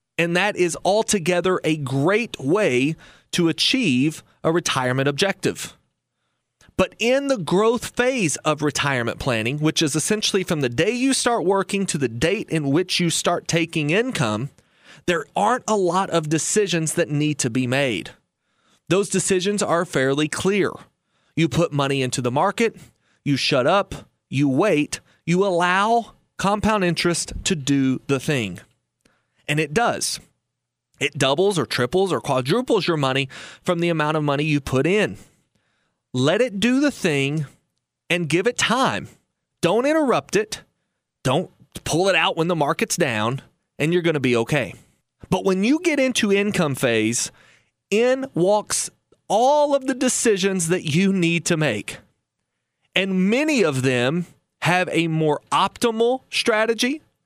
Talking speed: 150 wpm